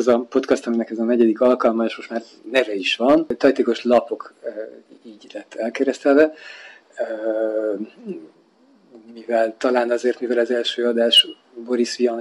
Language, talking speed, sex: Hungarian, 145 wpm, male